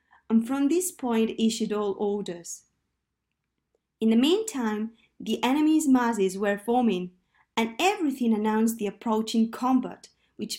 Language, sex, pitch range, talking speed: English, female, 200-275 Hz, 125 wpm